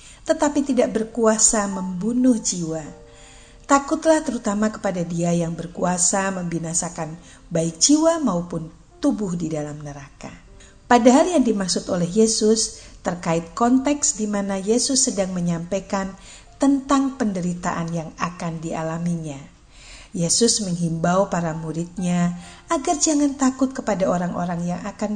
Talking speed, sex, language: 110 wpm, female, Indonesian